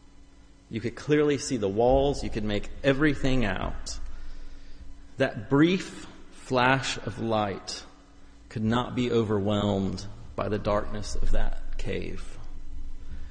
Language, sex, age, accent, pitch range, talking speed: English, male, 30-49, American, 95-125 Hz, 115 wpm